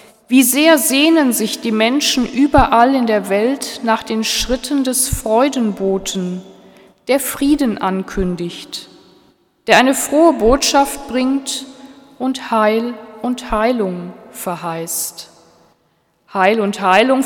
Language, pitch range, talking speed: German, 205-260 Hz, 110 wpm